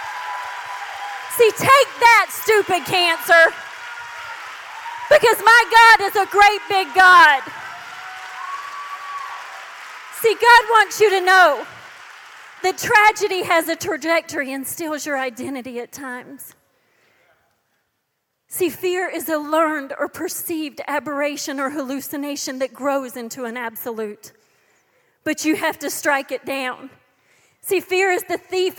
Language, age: English, 40-59